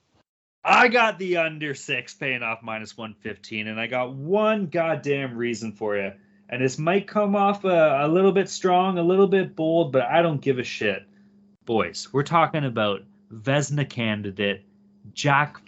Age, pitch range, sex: 20-39, 115-190 Hz, male